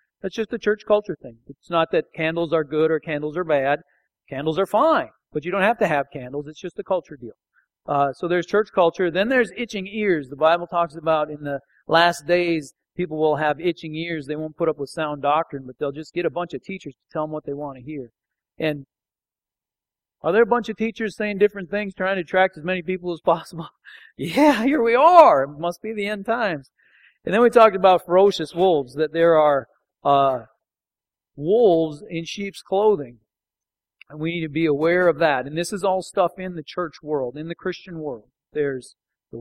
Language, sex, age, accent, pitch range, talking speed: English, male, 40-59, American, 150-185 Hz, 215 wpm